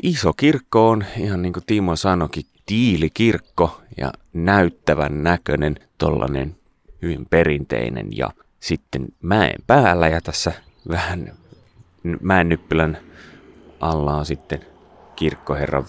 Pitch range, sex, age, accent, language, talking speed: 75-95 Hz, male, 30-49, native, Finnish, 100 wpm